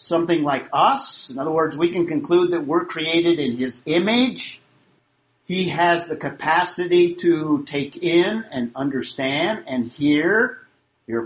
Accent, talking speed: American, 145 wpm